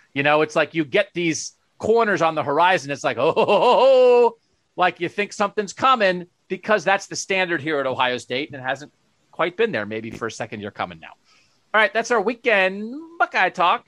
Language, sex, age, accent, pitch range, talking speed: English, male, 40-59, American, 140-185 Hz, 215 wpm